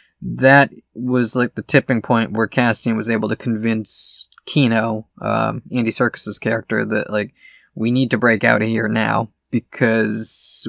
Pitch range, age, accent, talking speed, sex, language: 110-130 Hz, 20-39, American, 155 wpm, male, English